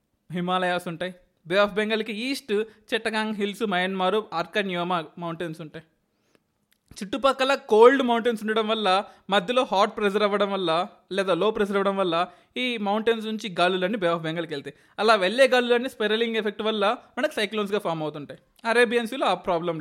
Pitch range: 185-235 Hz